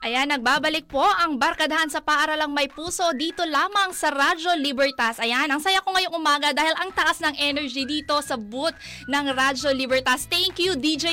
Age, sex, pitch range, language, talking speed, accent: 20-39, female, 260-320 Hz, Filipino, 185 wpm, native